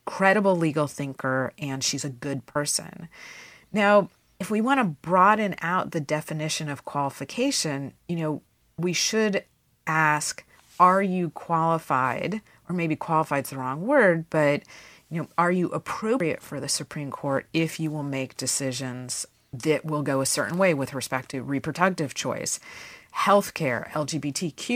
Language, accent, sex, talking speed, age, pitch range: English, American, female, 150 wpm, 30-49, 140-180 Hz